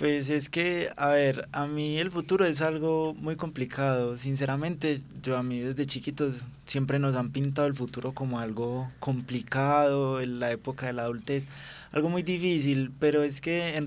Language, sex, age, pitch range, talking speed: Spanish, male, 20-39, 125-145 Hz, 175 wpm